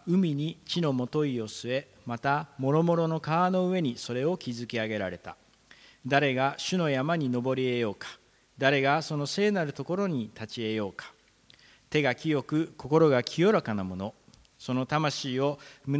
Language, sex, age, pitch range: Japanese, male, 40-59, 115-150 Hz